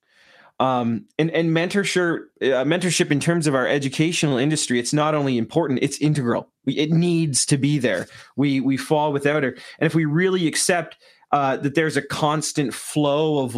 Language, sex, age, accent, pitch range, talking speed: English, male, 30-49, American, 140-200 Hz, 180 wpm